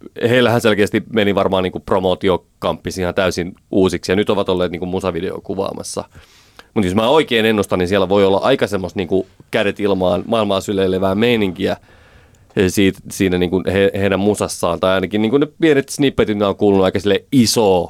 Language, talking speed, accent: Finnish, 170 wpm, native